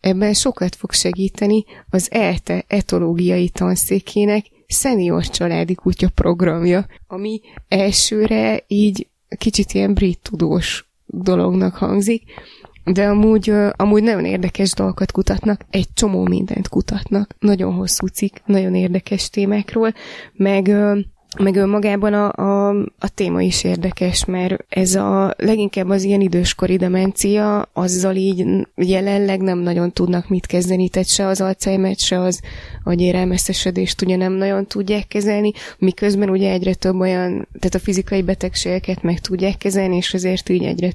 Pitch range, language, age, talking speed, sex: 180-205 Hz, Hungarian, 20-39, 130 wpm, female